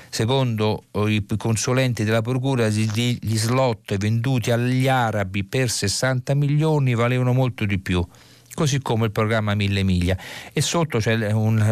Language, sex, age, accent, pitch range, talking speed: Italian, male, 50-69, native, 95-115 Hz, 140 wpm